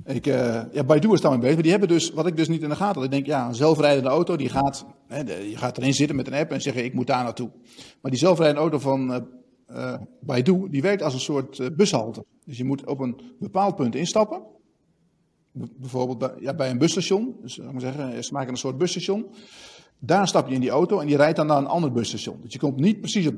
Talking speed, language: 240 wpm, Dutch